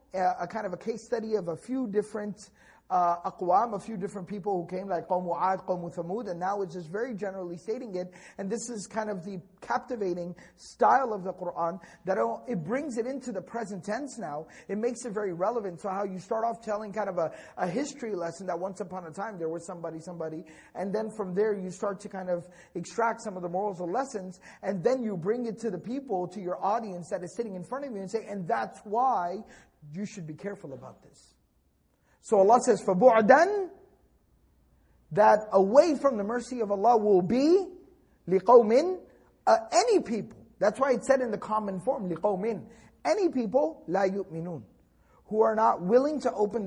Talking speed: 200 wpm